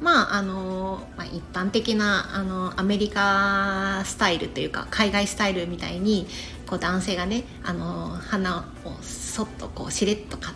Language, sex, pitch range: Japanese, female, 180-220 Hz